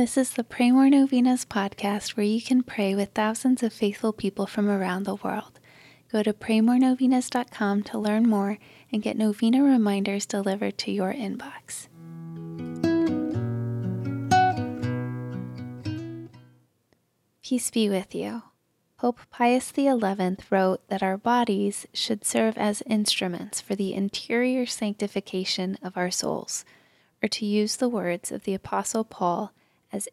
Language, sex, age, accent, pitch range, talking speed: English, female, 20-39, American, 180-225 Hz, 130 wpm